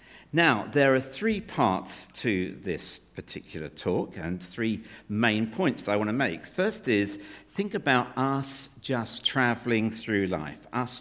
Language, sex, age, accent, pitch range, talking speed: English, male, 60-79, British, 105-145 Hz, 145 wpm